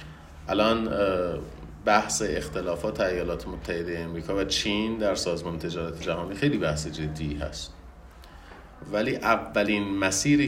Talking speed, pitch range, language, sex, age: 110 wpm, 80-105 Hz, Persian, male, 30-49